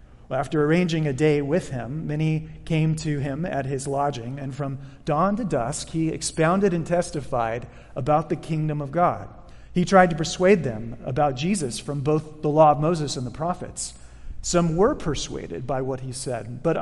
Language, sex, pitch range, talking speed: English, male, 140-185 Hz, 185 wpm